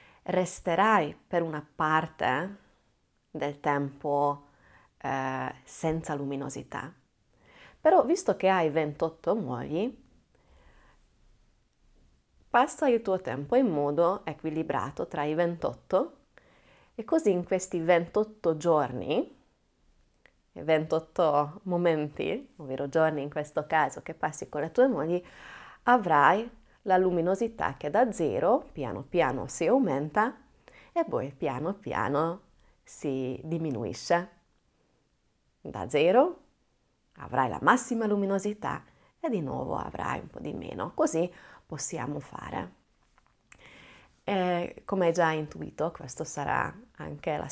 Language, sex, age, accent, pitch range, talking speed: Italian, female, 30-49, native, 145-180 Hz, 105 wpm